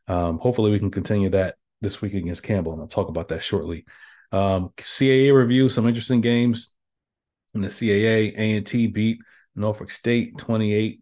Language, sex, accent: English, male, American